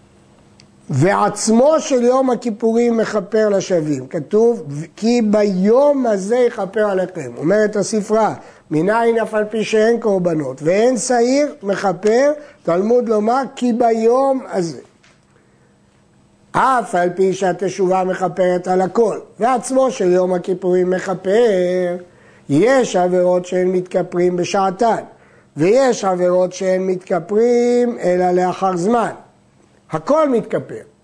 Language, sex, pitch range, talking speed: Hebrew, male, 180-235 Hz, 105 wpm